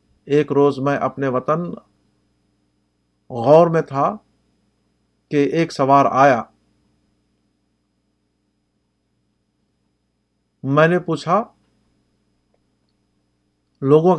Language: Urdu